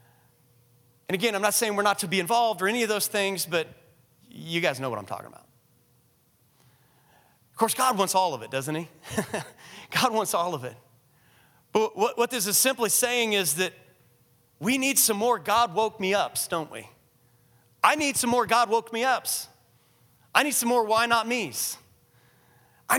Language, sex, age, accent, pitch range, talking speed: English, male, 30-49, American, 160-225 Hz, 185 wpm